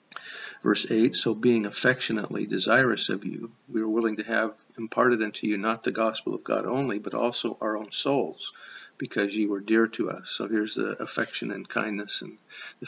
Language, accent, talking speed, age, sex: English, American, 190 wpm, 50-69, male